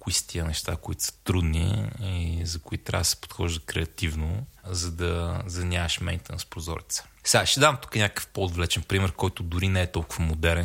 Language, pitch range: Bulgarian, 85-105 Hz